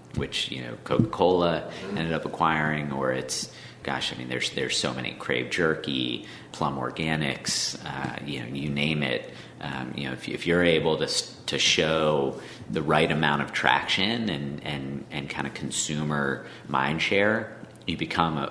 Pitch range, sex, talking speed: 65-75 Hz, male, 170 wpm